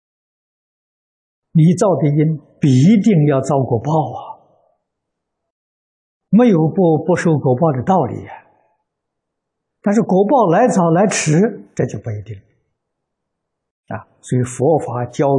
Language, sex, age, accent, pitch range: Chinese, male, 60-79, native, 120-165 Hz